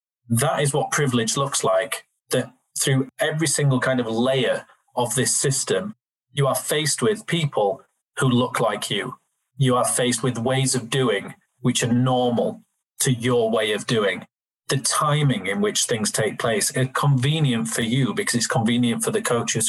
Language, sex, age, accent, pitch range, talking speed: English, male, 30-49, British, 125-145 Hz, 175 wpm